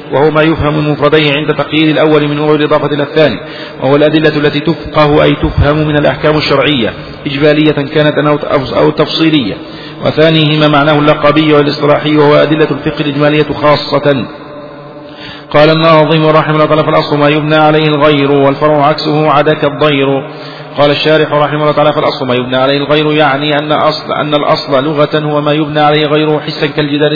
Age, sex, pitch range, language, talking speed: 40-59, male, 145-155 Hz, Arabic, 160 wpm